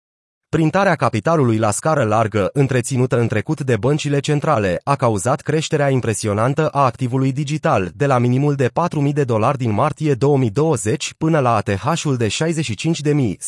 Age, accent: 30-49, native